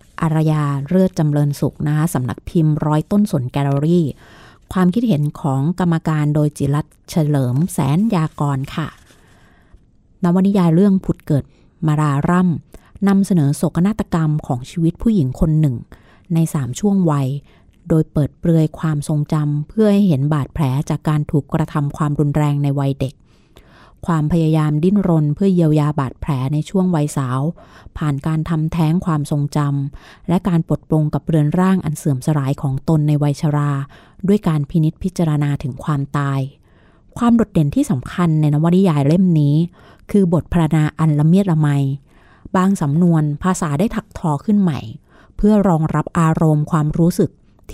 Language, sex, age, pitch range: Thai, female, 20-39, 145-175 Hz